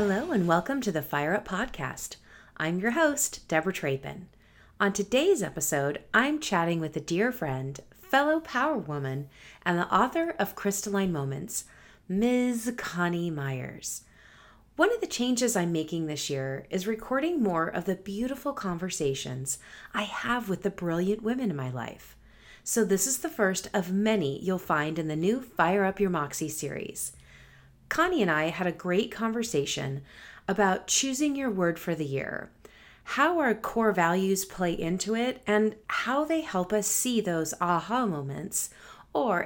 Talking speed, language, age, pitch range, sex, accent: 160 wpm, English, 30-49, 160-225 Hz, female, American